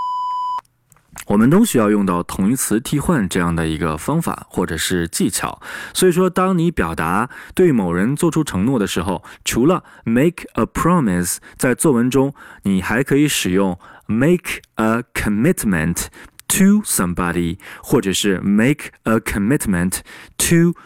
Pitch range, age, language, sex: 90-150 Hz, 20-39, Chinese, male